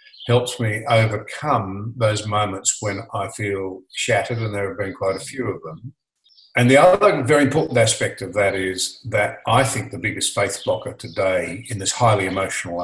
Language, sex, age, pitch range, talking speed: English, male, 50-69, 100-130 Hz, 180 wpm